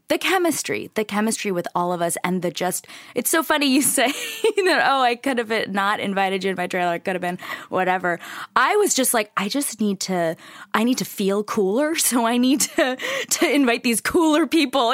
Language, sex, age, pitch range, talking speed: English, female, 20-39, 195-310 Hz, 215 wpm